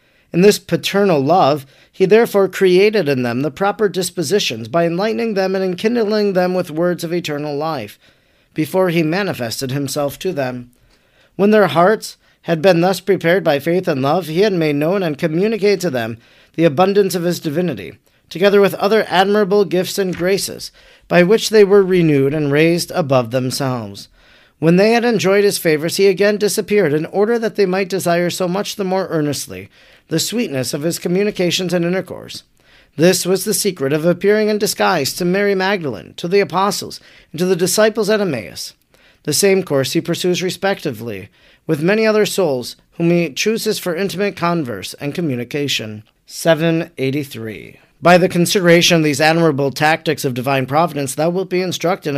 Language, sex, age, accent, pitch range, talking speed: English, male, 40-59, American, 150-200 Hz, 170 wpm